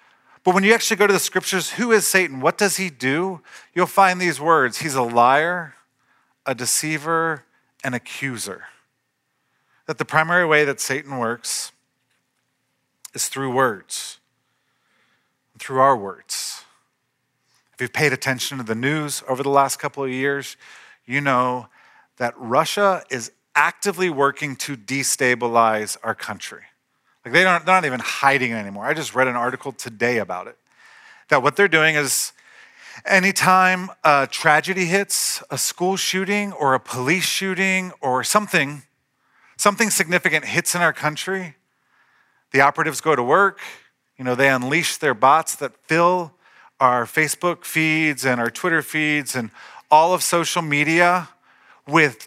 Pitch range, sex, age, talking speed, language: 130-185 Hz, male, 40-59, 150 wpm, English